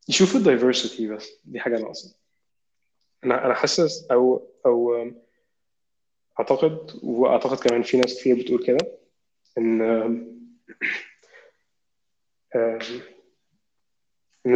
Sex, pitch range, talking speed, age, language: male, 115-135 Hz, 85 wpm, 20-39, Arabic